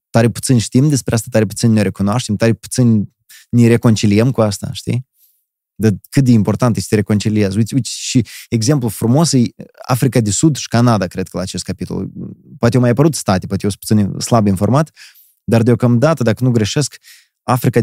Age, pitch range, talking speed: 20-39, 100-120 Hz, 190 wpm